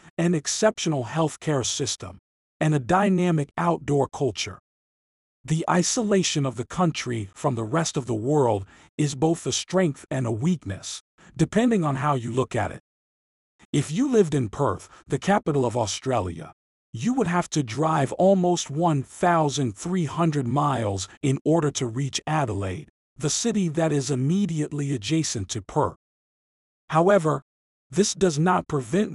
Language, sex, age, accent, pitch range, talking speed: English, male, 50-69, American, 130-170 Hz, 140 wpm